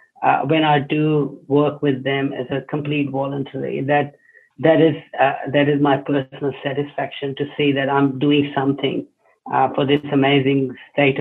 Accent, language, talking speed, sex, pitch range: Indian, English, 165 wpm, male, 135-145 Hz